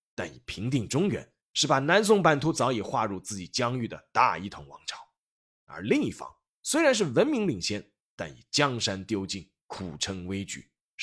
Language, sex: Chinese, male